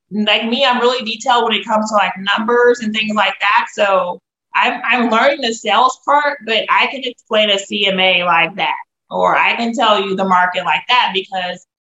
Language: English